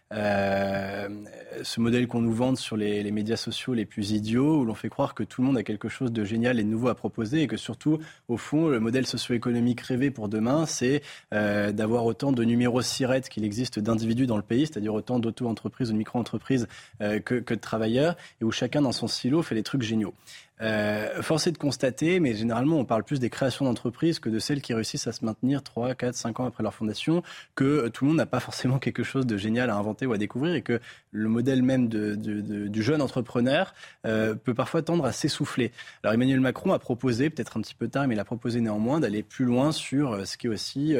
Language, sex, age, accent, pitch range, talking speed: French, male, 20-39, French, 110-130 Hz, 235 wpm